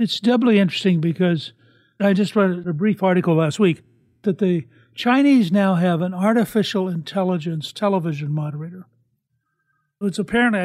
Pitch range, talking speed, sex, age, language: 160-195 Hz, 135 wpm, male, 60-79, English